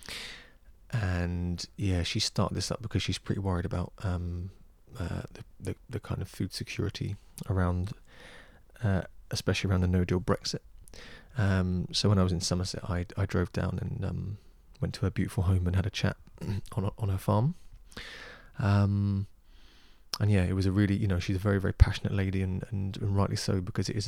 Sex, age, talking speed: male, 20-39, 195 wpm